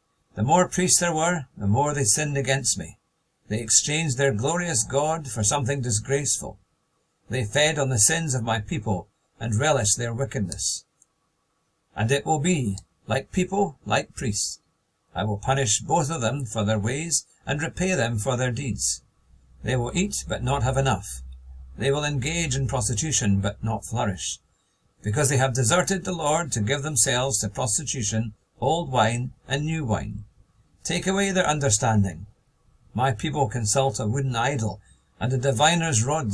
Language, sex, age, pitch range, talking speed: English, male, 50-69, 105-145 Hz, 165 wpm